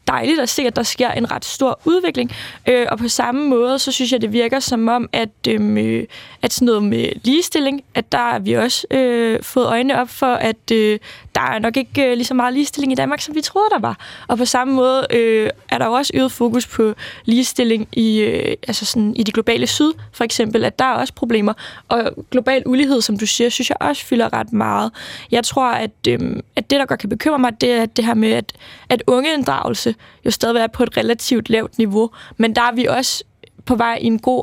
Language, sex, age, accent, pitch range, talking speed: Danish, female, 20-39, native, 225-255 Hz, 235 wpm